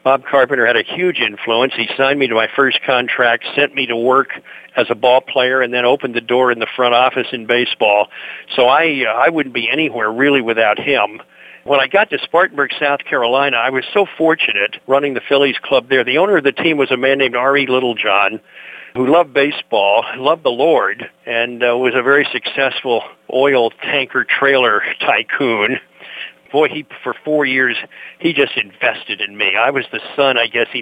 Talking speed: 195 wpm